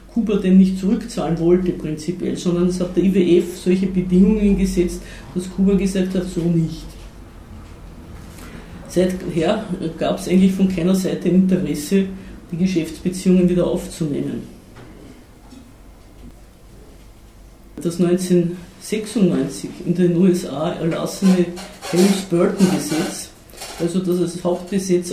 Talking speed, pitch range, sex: 105 wpm, 170-190 Hz, female